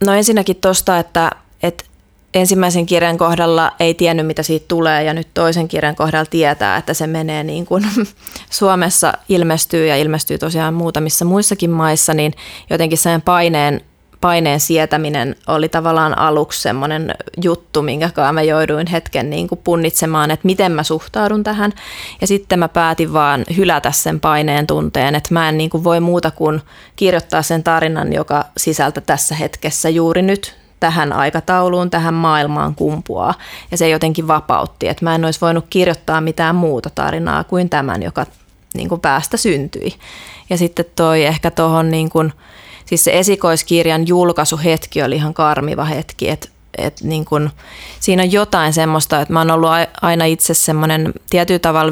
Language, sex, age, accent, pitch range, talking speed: Finnish, female, 20-39, native, 155-170 Hz, 155 wpm